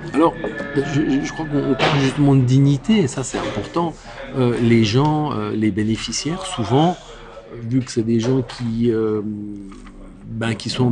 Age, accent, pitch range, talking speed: 40-59, French, 110-130 Hz, 165 wpm